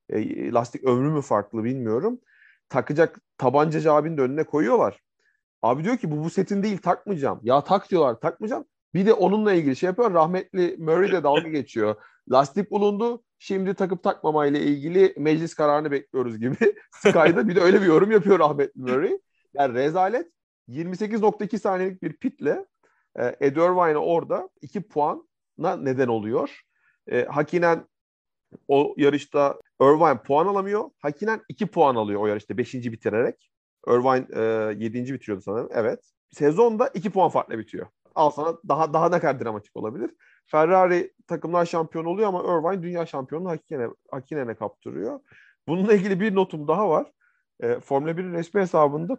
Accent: native